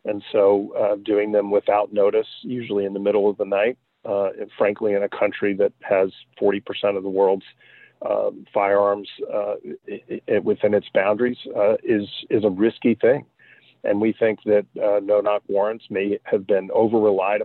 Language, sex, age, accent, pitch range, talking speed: English, male, 40-59, American, 105-135 Hz, 170 wpm